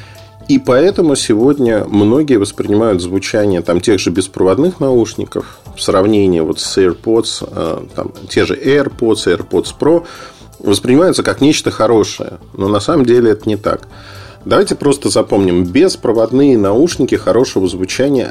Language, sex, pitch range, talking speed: Russian, male, 100-135 Hz, 130 wpm